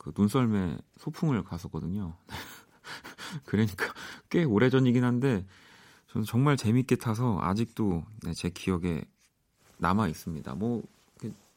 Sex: male